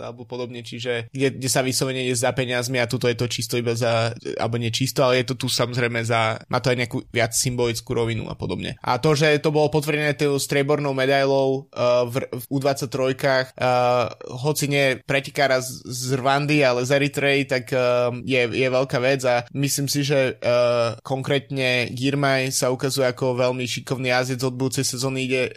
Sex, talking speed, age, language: male, 190 wpm, 20-39, Slovak